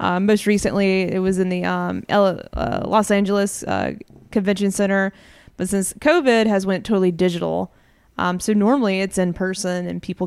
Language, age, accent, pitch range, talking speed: English, 20-39, American, 185-215 Hz, 175 wpm